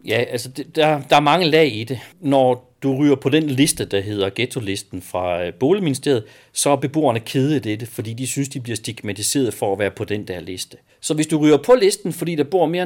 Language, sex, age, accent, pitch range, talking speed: Danish, male, 40-59, native, 125-165 Hz, 235 wpm